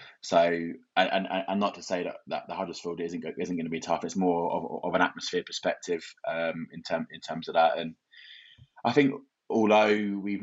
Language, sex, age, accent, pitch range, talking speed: English, male, 20-39, British, 85-100 Hz, 215 wpm